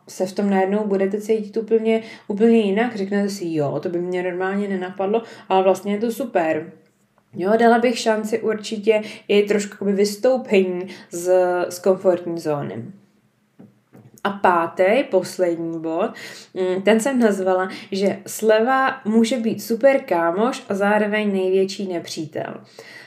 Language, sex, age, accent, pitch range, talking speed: Czech, female, 20-39, native, 185-215 Hz, 130 wpm